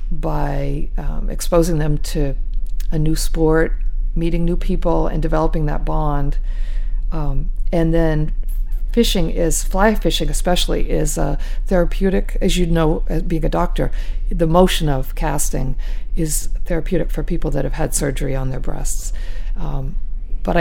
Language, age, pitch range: English, 50-69, 135-175 Hz